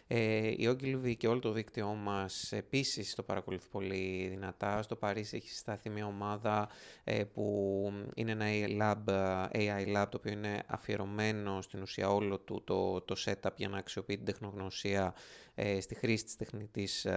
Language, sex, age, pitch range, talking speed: Greek, male, 20-39, 95-120 Hz, 155 wpm